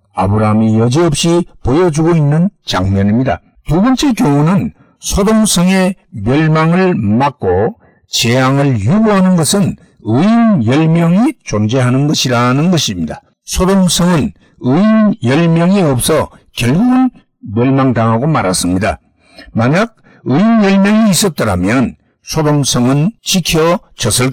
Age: 60-79